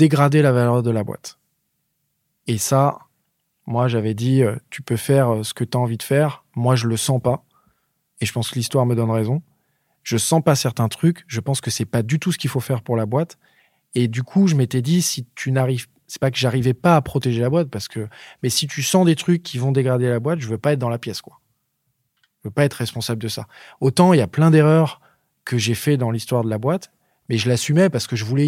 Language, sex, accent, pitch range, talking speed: French, male, French, 120-155 Hz, 255 wpm